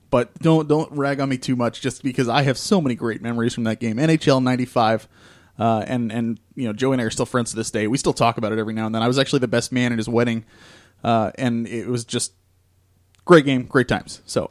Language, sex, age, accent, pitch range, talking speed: English, male, 20-39, American, 110-140 Hz, 260 wpm